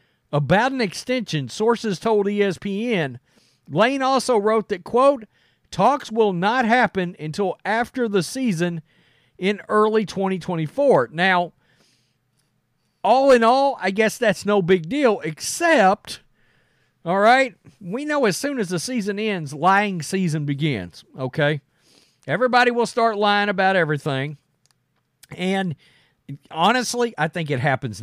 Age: 50-69